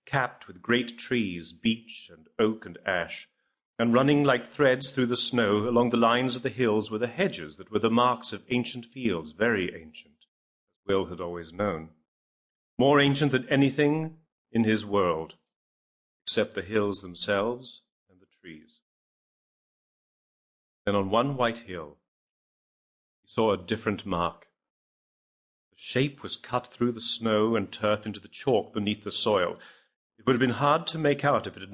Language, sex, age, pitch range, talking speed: English, male, 40-59, 100-125 Hz, 170 wpm